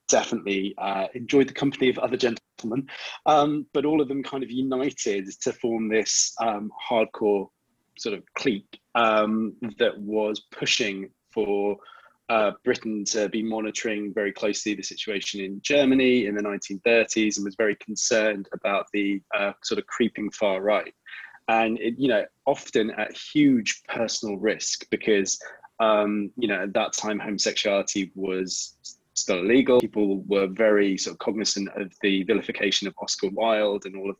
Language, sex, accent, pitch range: English, male, British, 100-115 Hz